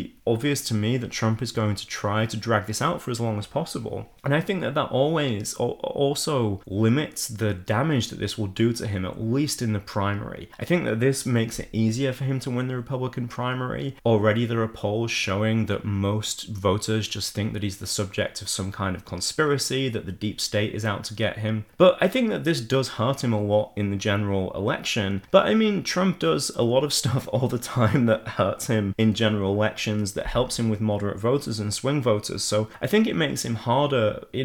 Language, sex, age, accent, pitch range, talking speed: English, male, 20-39, British, 105-130 Hz, 225 wpm